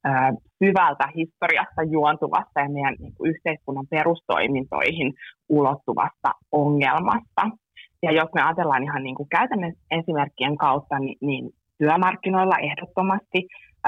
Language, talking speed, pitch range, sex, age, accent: Finnish, 90 wpm, 140-175 Hz, female, 20-39, native